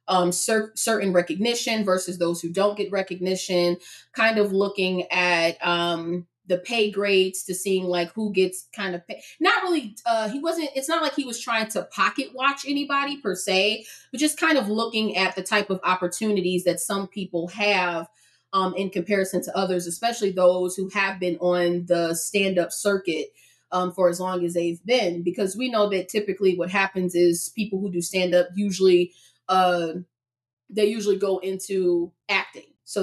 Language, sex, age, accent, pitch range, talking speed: English, female, 20-39, American, 180-210 Hz, 180 wpm